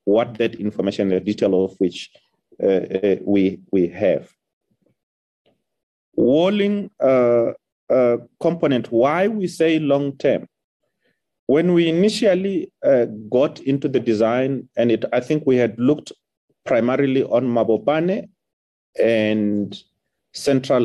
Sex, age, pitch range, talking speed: male, 30-49, 115-160 Hz, 110 wpm